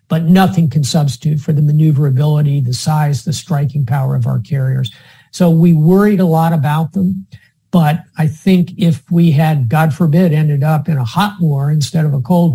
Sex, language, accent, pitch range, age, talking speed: male, English, American, 140-165 Hz, 50-69, 190 wpm